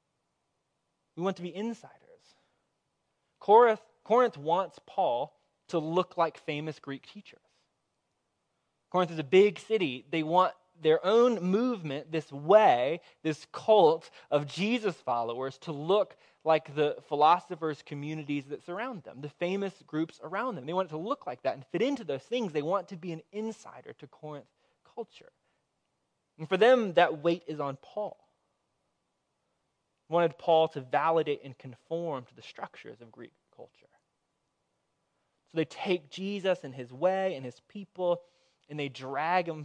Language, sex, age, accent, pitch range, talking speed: English, male, 20-39, American, 145-190 Hz, 150 wpm